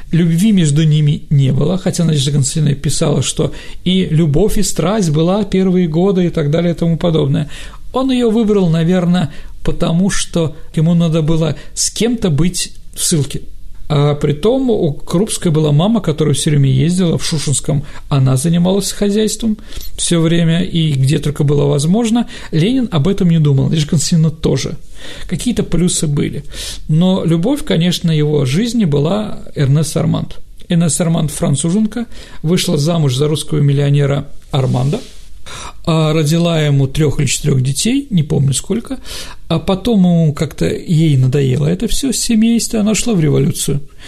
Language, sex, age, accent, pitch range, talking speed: Russian, male, 40-59, native, 145-185 Hz, 150 wpm